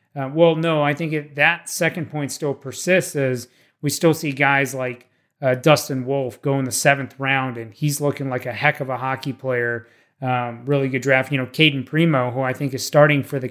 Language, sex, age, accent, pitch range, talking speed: English, male, 30-49, American, 130-150 Hz, 220 wpm